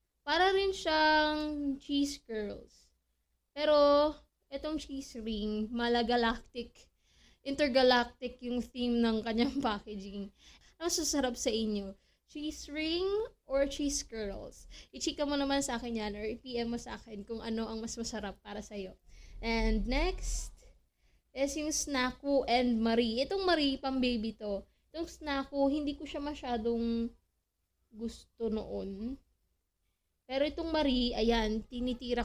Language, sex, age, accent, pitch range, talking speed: English, female, 20-39, Filipino, 225-285 Hz, 125 wpm